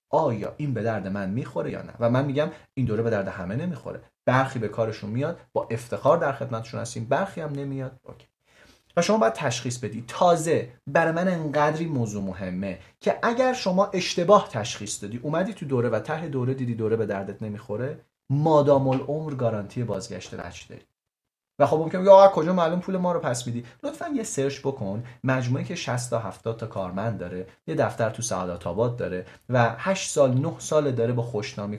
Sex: male